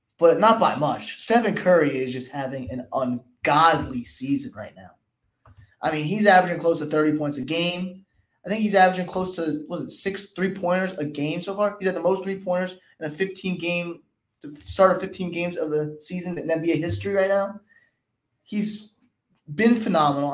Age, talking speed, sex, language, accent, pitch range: 20-39, 190 wpm, male, English, American, 145-185 Hz